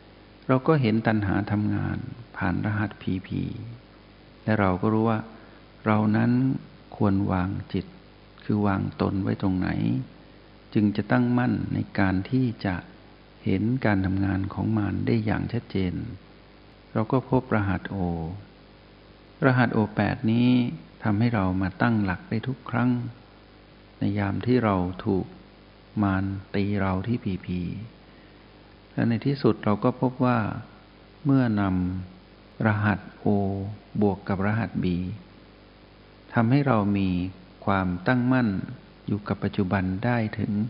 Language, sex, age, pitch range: Thai, male, 60-79, 95-115 Hz